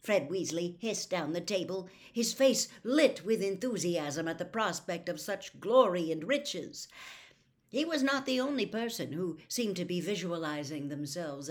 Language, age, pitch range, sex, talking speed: English, 60-79, 155-215 Hz, female, 160 wpm